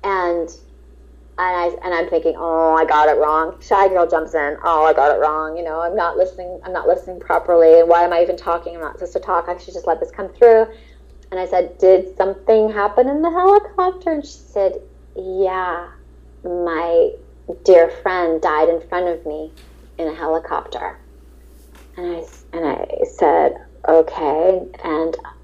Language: English